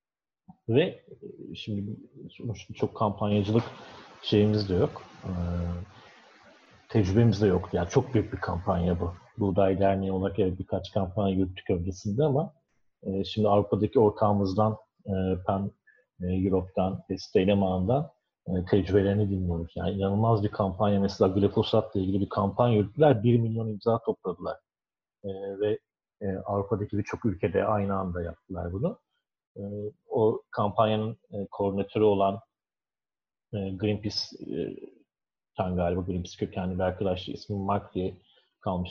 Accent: native